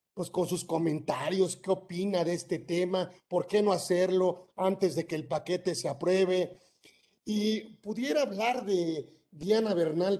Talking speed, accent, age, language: 155 wpm, Mexican, 50-69, Spanish